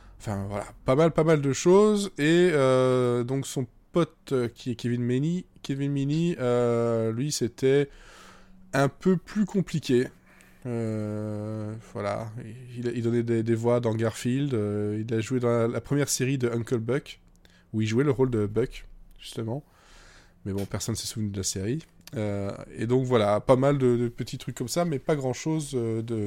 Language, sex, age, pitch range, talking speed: French, male, 20-39, 115-140 Hz, 185 wpm